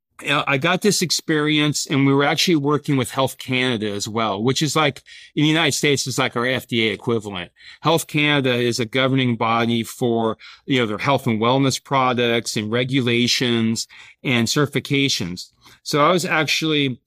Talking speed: 170 wpm